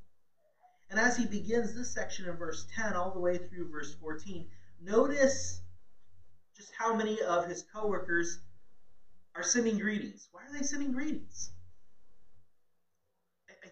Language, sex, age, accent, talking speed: English, male, 30-49, American, 135 wpm